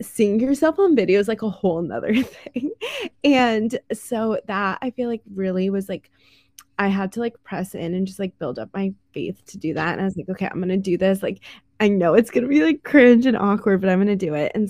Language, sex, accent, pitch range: English, female, American, 185-210 Hz